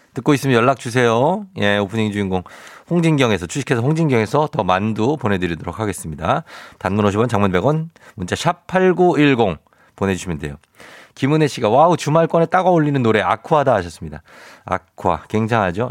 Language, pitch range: Korean, 105-160 Hz